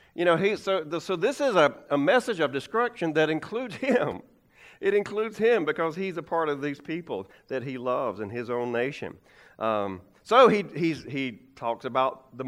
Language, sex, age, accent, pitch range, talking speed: English, male, 40-59, American, 120-195 Hz, 195 wpm